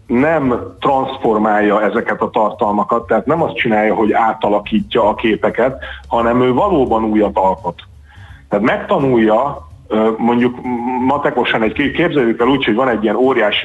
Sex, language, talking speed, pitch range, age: male, Hungarian, 140 wpm, 105-140 Hz, 40-59